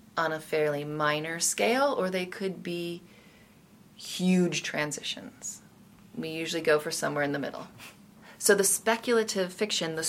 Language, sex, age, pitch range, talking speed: English, female, 30-49, 155-205 Hz, 145 wpm